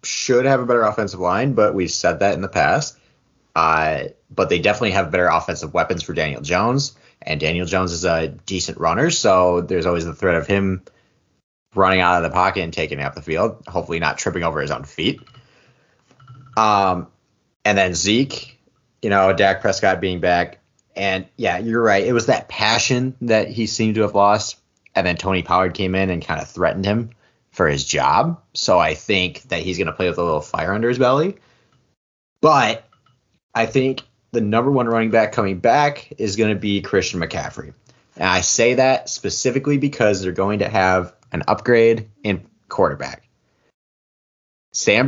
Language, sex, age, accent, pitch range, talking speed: English, male, 30-49, American, 90-115 Hz, 185 wpm